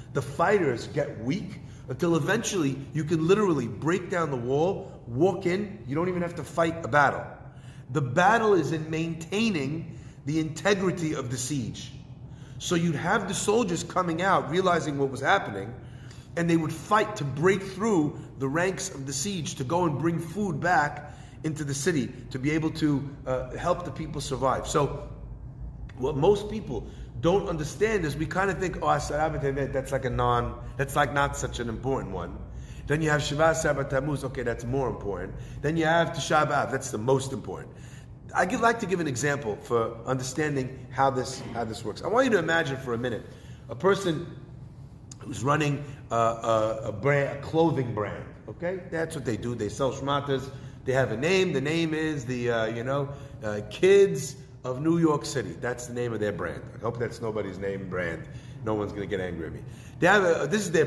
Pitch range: 130-165 Hz